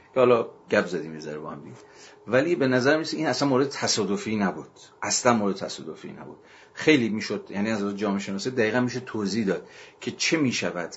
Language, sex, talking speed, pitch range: Persian, male, 185 wpm, 90-110 Hz